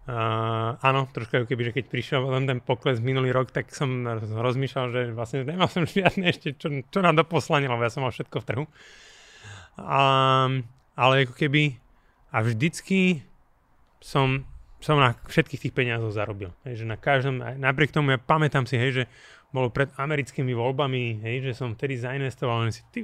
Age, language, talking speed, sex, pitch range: 30-49, Slovak, 185 wpm, male, 125-150 Hz